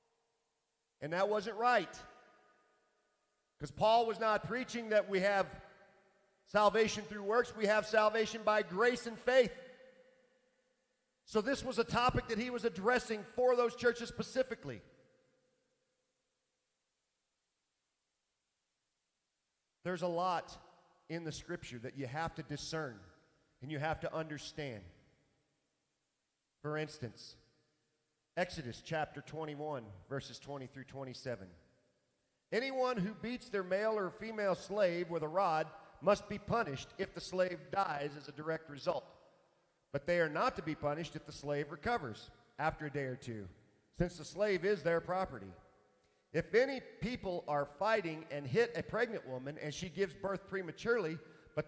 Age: 40-59